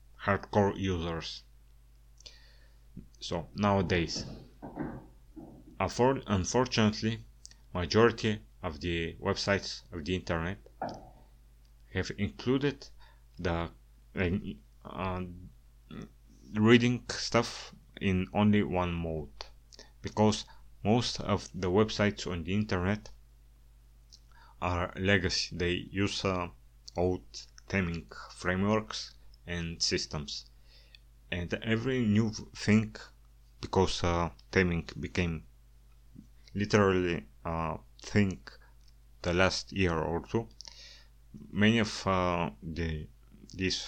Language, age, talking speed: English, 30-49, 85 wpm